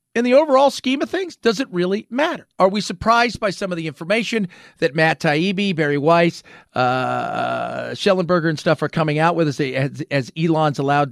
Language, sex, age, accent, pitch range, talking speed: English, male, 40-59, American, 150-220 Hz, 190 wpm